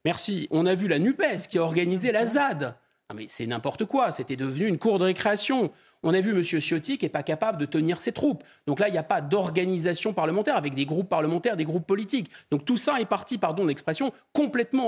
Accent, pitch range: French, 155-240 Hz